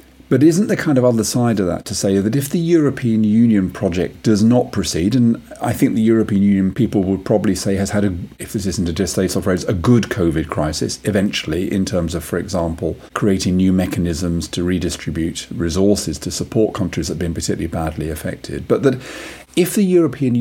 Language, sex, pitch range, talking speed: English, male, 90-120 Hz, 205 wpm